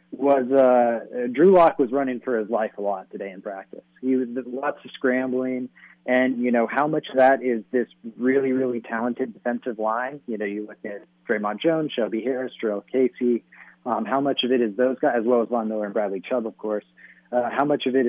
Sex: male